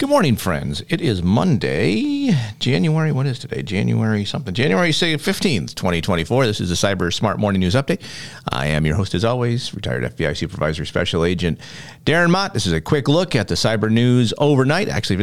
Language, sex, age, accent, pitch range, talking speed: English, male, 50-69, American, 95-140 Hz, 185 wpm